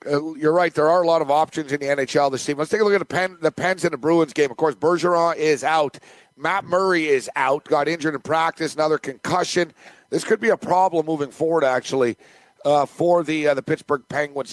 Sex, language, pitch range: male, English, 145-175 Hz